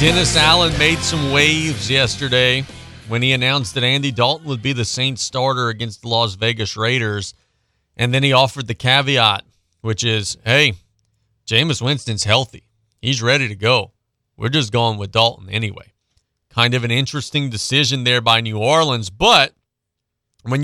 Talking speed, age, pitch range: 160 wpm, 30-49, 110-145 Hz